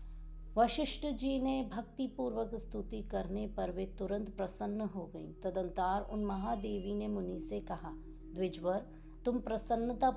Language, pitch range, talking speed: Hindi, 170-210 Hz, 120 wpm